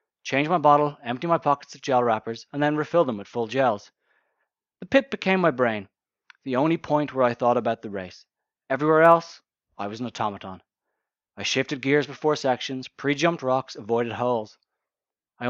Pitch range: 105-145 Hz